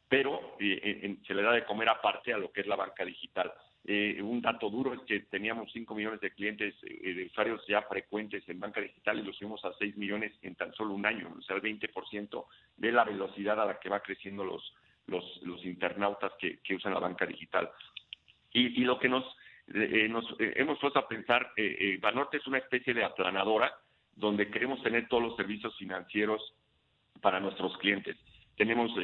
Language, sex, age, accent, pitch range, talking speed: Spanish, male, 50-69, Mexican, 100-115 Hz, 200 wpm